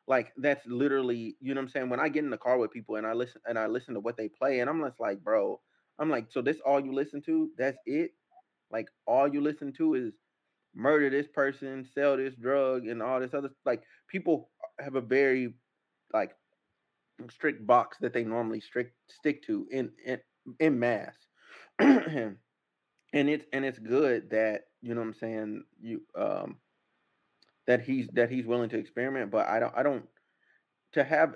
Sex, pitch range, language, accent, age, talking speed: male, 120-145 Hz, English, American, 30-49, 195 wpm